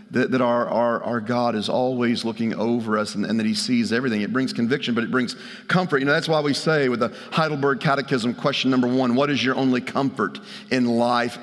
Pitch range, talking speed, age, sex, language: 125-150 Hz, 230 wpm, 40-59, male, English